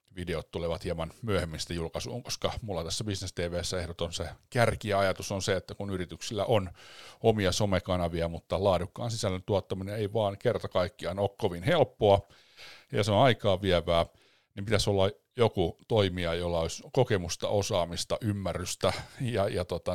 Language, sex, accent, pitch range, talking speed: Finnish, male, native, 80-100 Hz, 155 wpm